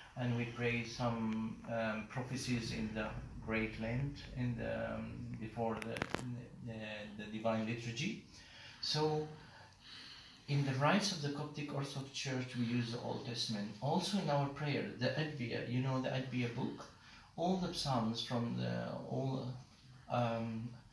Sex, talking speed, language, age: male, 145 wpm, English, 50-69